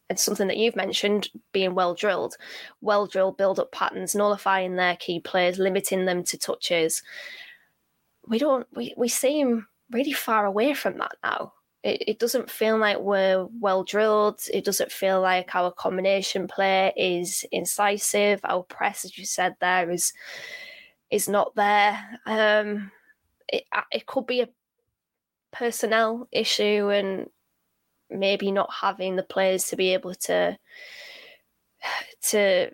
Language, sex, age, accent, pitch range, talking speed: English, female, 20-39, British, 185-220 Hz, 140 wpm